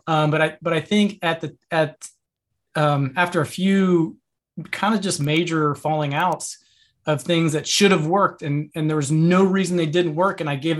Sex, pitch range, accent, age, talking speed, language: male, 155-185 Hz, American, 20-39, 205 wpm, English